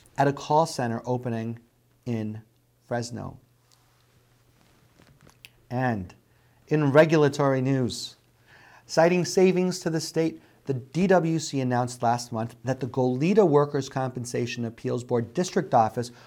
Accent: American